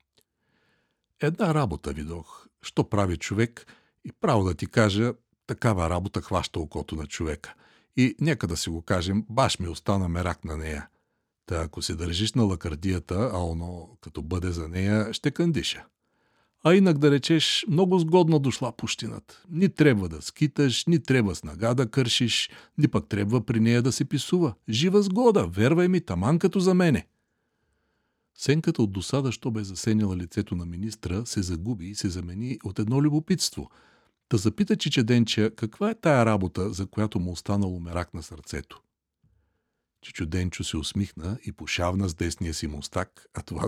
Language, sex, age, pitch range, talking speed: Bulgarian, male, 60-79, 85-125 Hz, 165 wpm